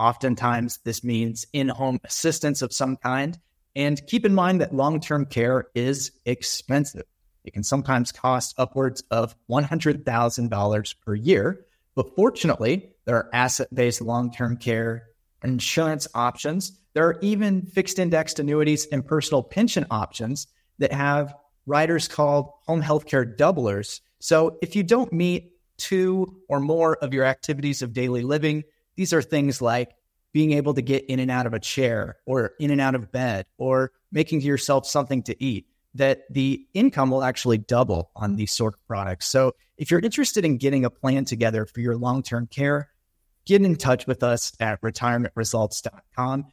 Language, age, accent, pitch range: English, 30-49, American, 120-150 Hz